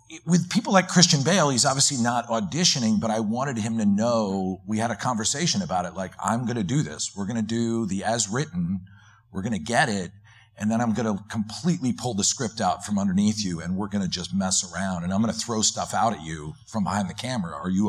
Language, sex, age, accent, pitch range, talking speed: English, male, 50-69, American, 100-120 Hz, 245 wpm